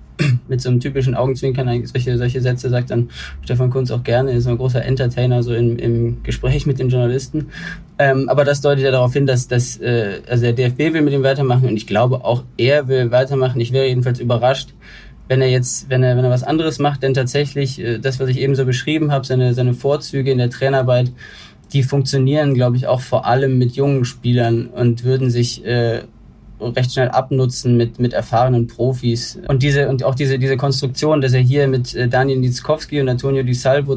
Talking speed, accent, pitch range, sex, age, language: 205 wpm, German, 120-135 Hz, male, 20-39, German